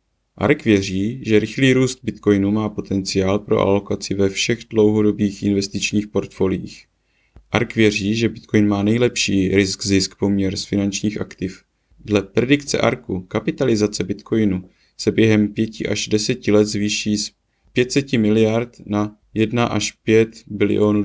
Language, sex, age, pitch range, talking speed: Czech, male, 30-49, 100-110 Hz, 130 wpm